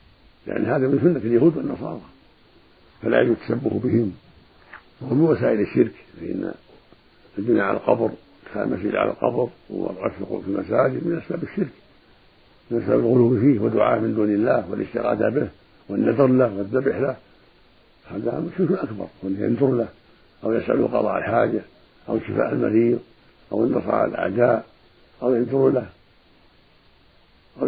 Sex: male